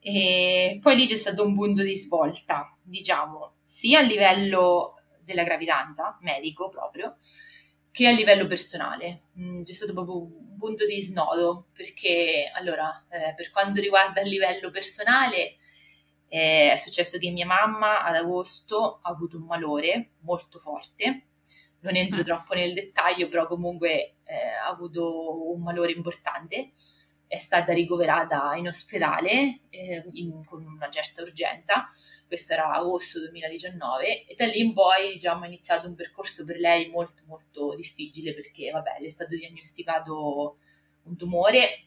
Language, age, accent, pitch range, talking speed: Italian, 20-39, native, 160-190 Hz, 145 wpm